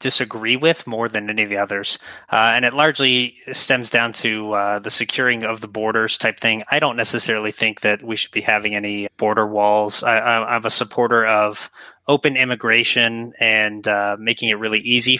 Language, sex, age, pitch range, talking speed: English, male, 20-39, 105-120 Hz, 190 wpm